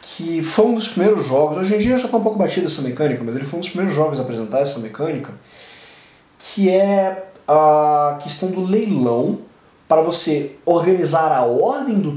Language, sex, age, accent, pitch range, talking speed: Portuguese, male, 20-39, Brazilian, 135-185 Hz, 190 wpm